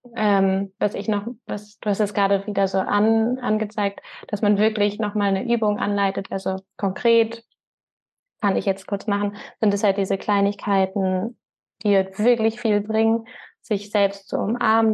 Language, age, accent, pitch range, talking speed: German, 20-39, German, 190-215 Hz, 155 wpm